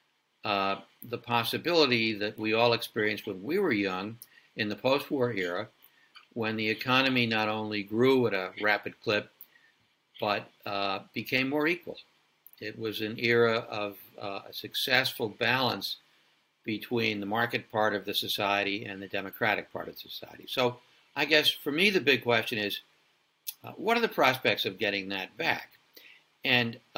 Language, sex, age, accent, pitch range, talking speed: English, male, 60-79, American, 105-125 Hz, 160 wpm